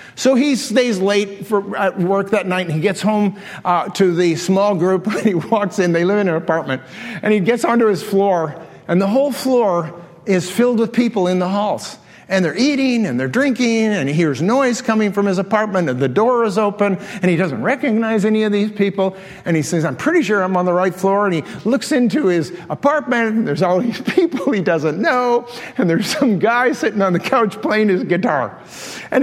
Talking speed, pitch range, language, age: 220 wpm, 195-270 Hz, English, 50-69